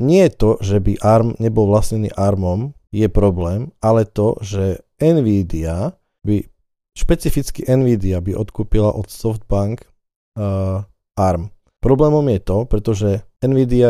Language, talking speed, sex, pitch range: Slovak, 125 wpm, male, 100-115 Hz